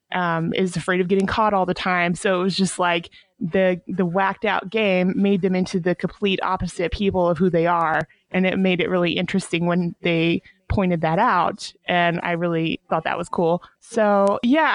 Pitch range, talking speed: 180-210 Hz, 205 wpm